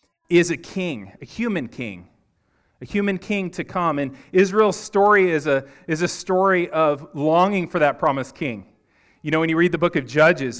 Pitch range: 140-190 Hz